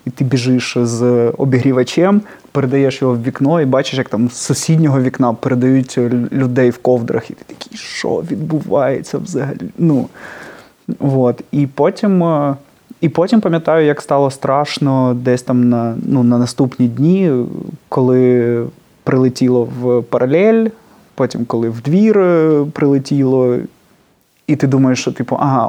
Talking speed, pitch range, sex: 125 wpm, 130-155 Hz, male